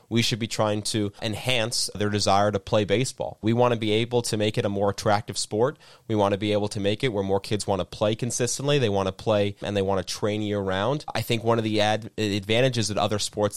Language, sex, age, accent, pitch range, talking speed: English, male, 30-49, American, 105-130 Hz, 250 wpm